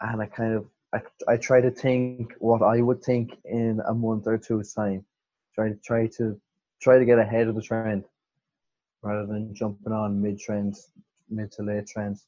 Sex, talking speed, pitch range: male, 195 wpm, 105-120 Hz